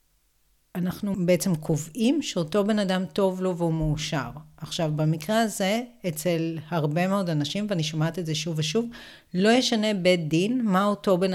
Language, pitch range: Hebrew, 160-215 Hz